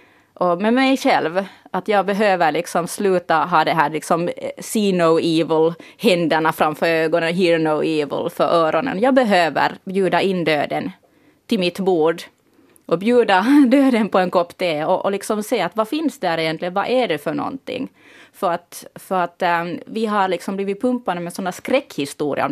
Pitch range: 165-205 Hz